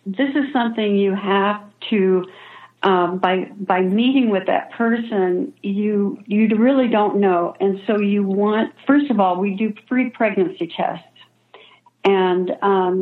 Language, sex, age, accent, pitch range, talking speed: English, female, 60-79, American, 185-220 Hz, 145 wpm